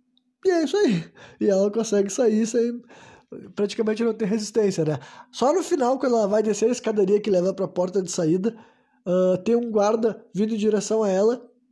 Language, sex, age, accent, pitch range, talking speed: Portuguese, male, 20-39, Brazilian, 170-235 Hz, 195 wpm